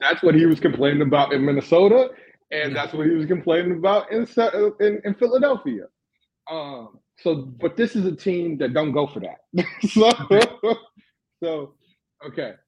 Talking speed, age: 155 wpm, 30-49